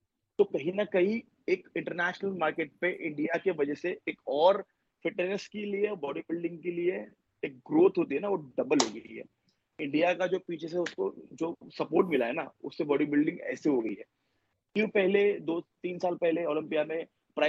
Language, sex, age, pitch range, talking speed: Urdu, male, 30-49, 140-185 Hz, 80 wpm